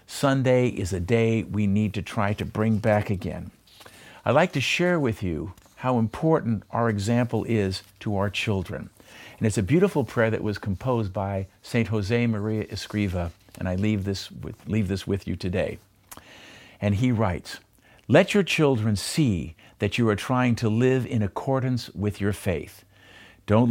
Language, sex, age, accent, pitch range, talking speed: English, male, 50-69, American, 95-120 Hz, 165 wpm